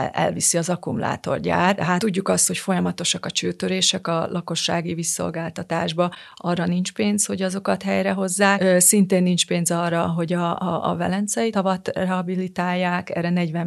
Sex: female